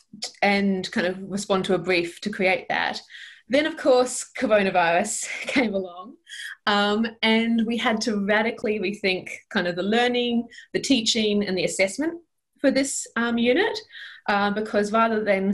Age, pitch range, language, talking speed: 20-39, 180-220 Hz, English, 155 wpm